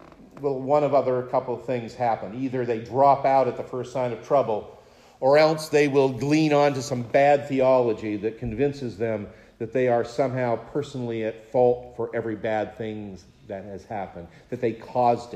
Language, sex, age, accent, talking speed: English, male, 50-69, American, 180 wpm